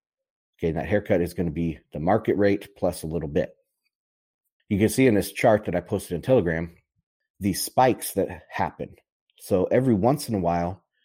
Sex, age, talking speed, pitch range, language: male, 30-49, 195 wpm, 95-130 Hz, English